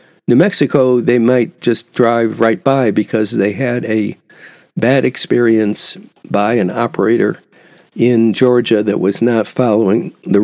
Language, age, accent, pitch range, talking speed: English, 60-79, American, 110-135 Hz, 140 wpm